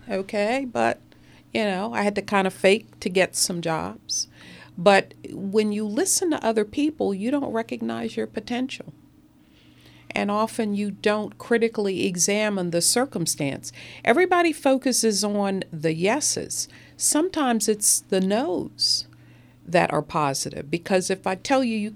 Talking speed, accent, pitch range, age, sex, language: 140 wpm, American, 175-235 Hz, 50-69, female, English